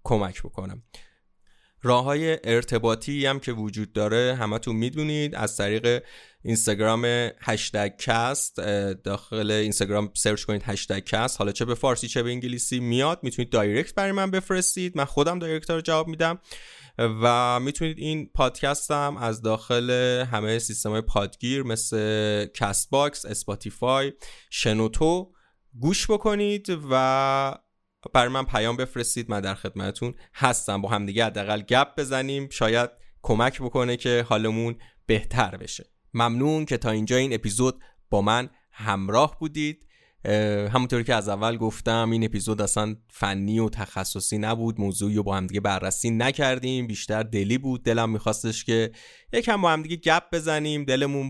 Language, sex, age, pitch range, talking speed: Persian, male, 20-39, 110-140 Hz, 135 wpm